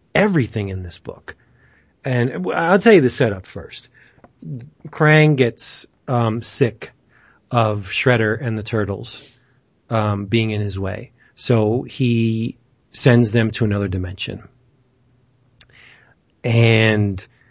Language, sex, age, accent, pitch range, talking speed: English, male, 40-59, American, 110-130 Hz, 115 wpm